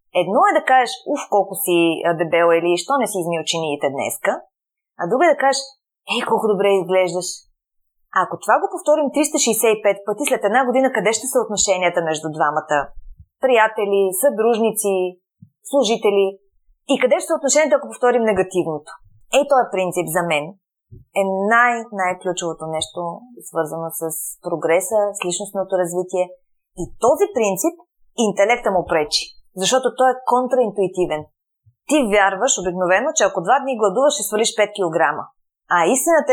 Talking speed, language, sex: 145 wpm, Bulgarian, female